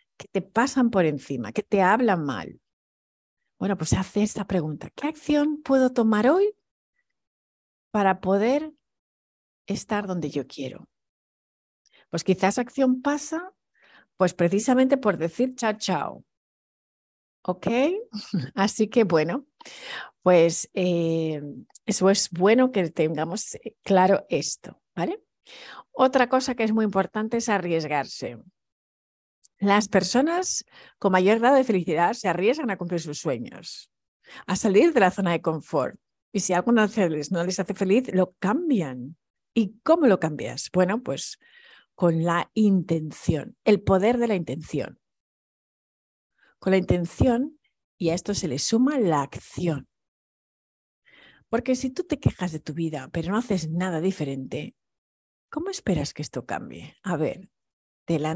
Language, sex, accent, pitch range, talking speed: Spanish, female, Spanish, 165-240 Hz, 135 wpm